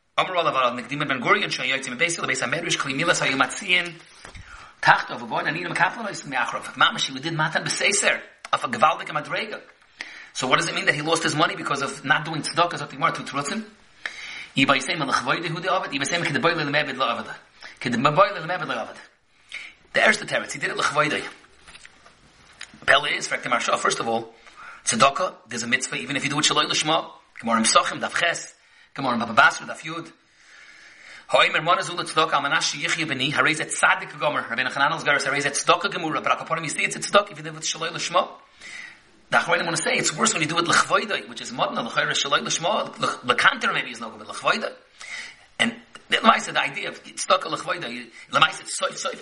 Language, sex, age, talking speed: English, male, 30-49, 65 wpm